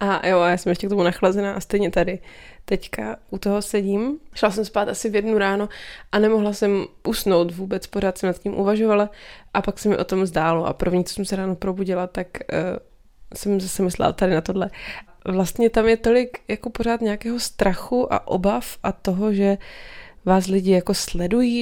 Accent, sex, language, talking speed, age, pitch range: native, female, Czech, 195 wpm, 20-39, 190-215 Hz